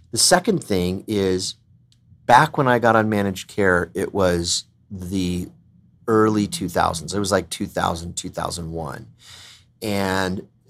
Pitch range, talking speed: 95-115 Hz, 125 wpm